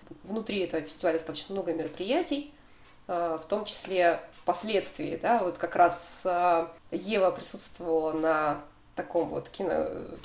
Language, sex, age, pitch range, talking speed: Russian, female, 20-39, 175-220 Hz, 115 wpm